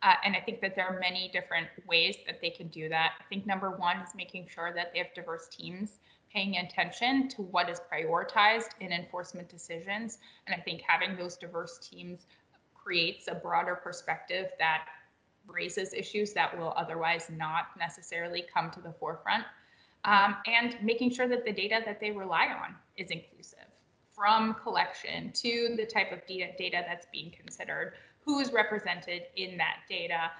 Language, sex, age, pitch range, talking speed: English, female, 20-39, 180-220 Hz, 175 wpm